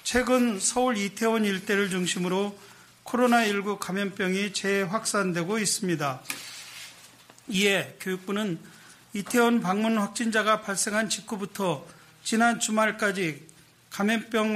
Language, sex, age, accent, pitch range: Korean, male, 40-59, native, 185-225 Hz